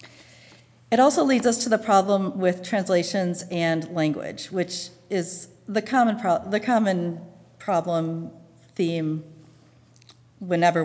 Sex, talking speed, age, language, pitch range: female, 115 wpm, 40-59, English, 165-220 Hz